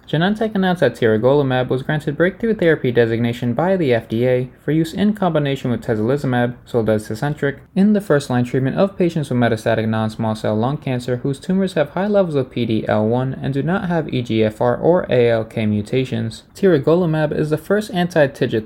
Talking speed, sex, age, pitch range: 165 wpm, male, 20-39, 115-165 Hz